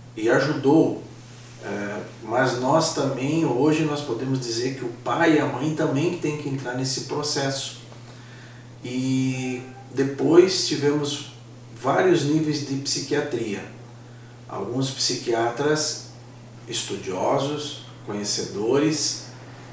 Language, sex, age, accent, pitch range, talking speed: Portuguese, male, 50-69, Brazilian, 120-155 Hz, 95 wpm